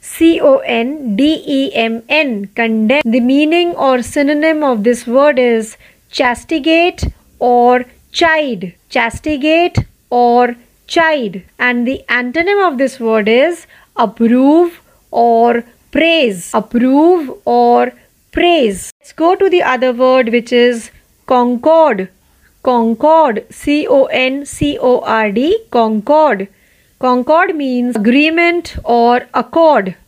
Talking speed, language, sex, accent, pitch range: 90 wpm, Marathi, female, native, 235-315 Hz